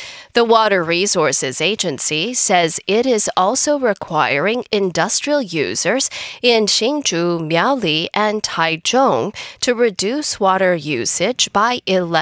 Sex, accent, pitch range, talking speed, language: female, American, 175-255 Hz, 105 wpm, English